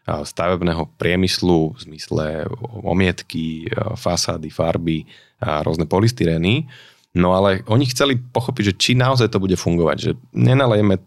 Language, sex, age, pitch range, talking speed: Slovak, male, 30-49, 85-105 Hz, 125 wpm